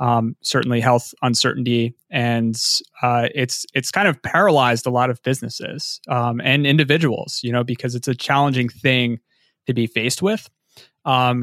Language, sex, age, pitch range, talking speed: English, male, 30-49, 120-145 Hz, 160 wpm